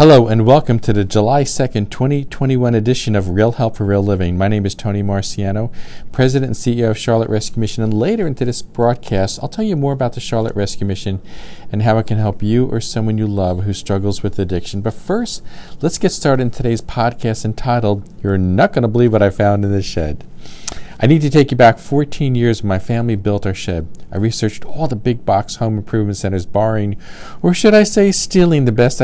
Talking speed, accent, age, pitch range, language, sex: 220 wpm, American, 50-69, 100-125 Hz, English, male